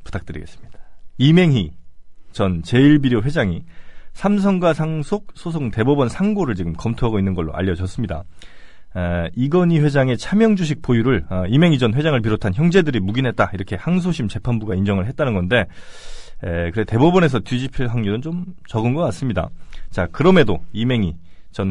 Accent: native